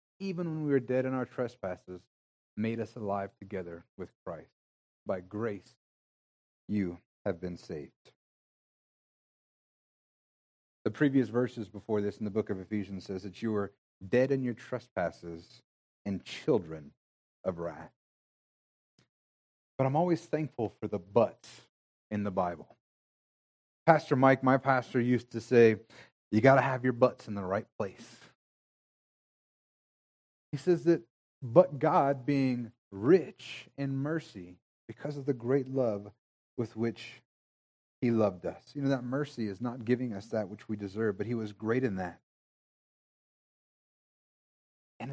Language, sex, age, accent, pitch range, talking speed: English, male, 30-49, American, 100-140 Hz, 140 wpm